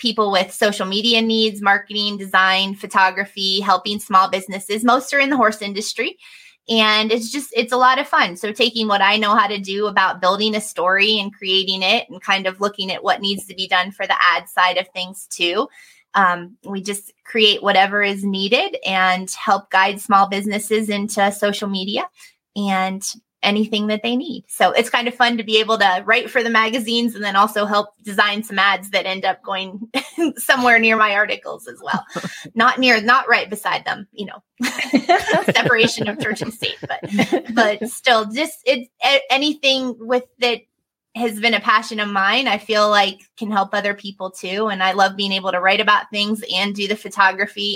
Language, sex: English, female